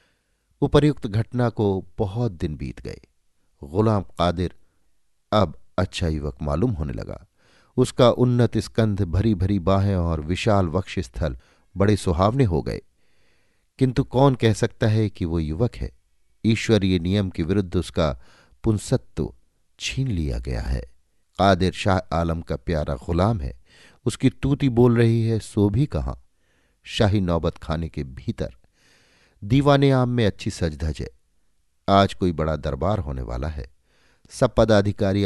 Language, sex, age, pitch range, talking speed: Hindi, male, 50-69, 80-110 Hz, 140 wpm